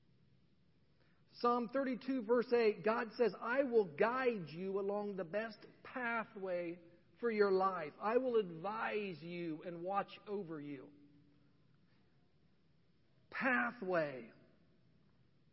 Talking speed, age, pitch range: 100 wpm, 40-59, 205-265 Hz